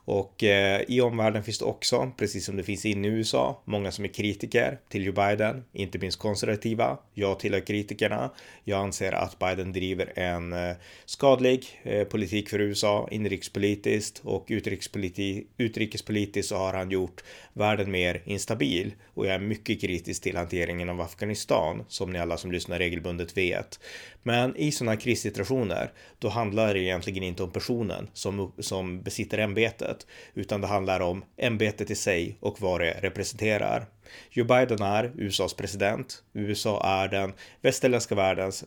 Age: 30-49